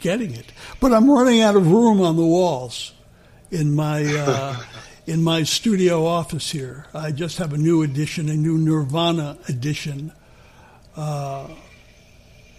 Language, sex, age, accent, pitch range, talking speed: English, male, 60-79, American, 140-170 Hz, 145 wpm